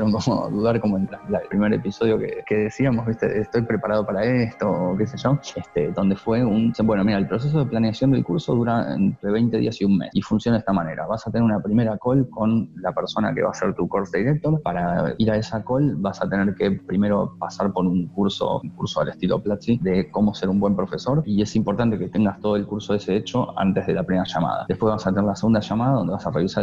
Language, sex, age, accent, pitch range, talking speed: Spanish, male, 20-39, Argentinian, 100-115 Hz, 250 wpm